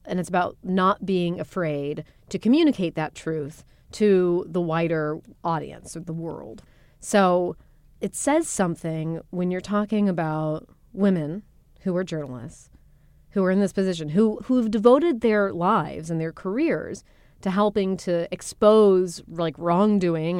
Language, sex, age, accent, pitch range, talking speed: English, female, 30-49, American, 165-205 Hz, 140 wpm